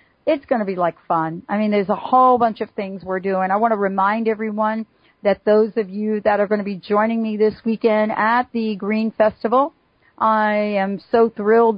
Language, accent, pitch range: English, American, 195-245 Hz